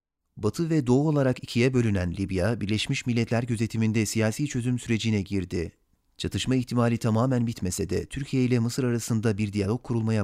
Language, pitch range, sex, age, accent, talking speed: Turkish, 100-120 Hz, male, 40-59, native, 150 wpm